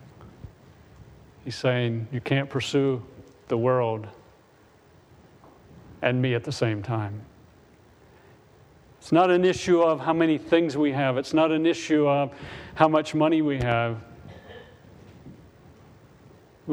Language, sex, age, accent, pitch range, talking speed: English, male, 40-59, American, 115-150 Hz, 120 wpm